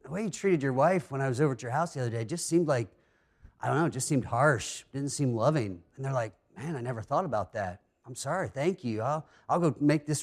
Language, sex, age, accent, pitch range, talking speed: English, male, 30-49, American, 135-185 Hz, 275 wpm